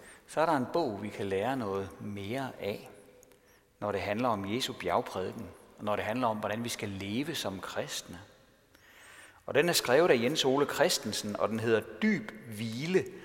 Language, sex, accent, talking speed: Danish, male, native, 185 wpm